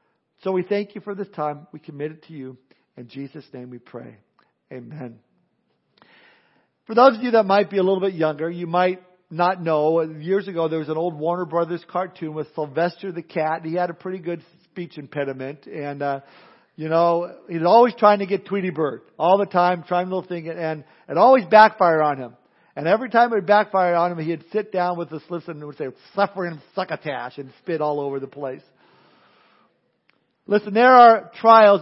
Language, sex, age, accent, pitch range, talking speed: English, male, 50-69, American, 160-195 Hz, 200 wpm